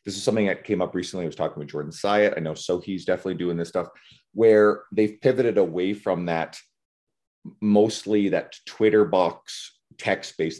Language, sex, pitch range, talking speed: English, male, 90-125 Hz, 175 wpm